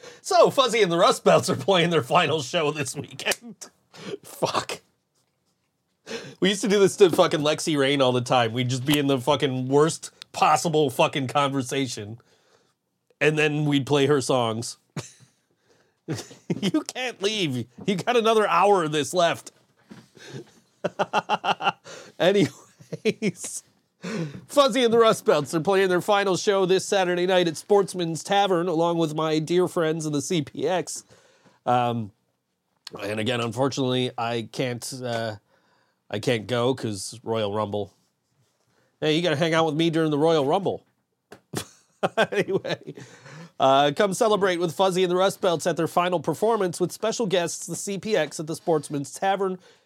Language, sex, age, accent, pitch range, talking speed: English, male, 30-49, American, 135-190 Hz, 150 wpm